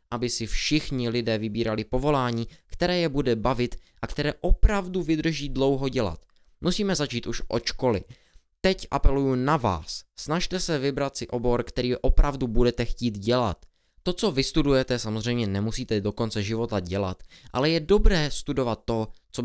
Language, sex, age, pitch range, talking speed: Czech, male, 20-39, 110-155 Hz, 155 wpm